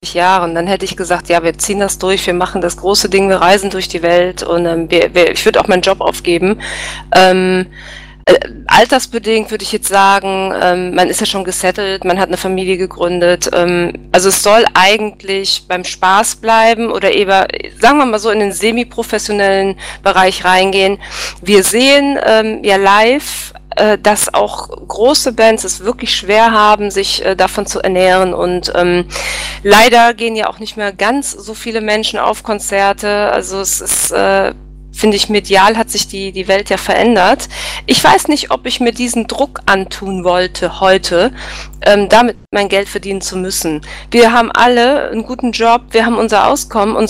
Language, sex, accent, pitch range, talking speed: German, female, German, 185-220 Hz, 180 wpm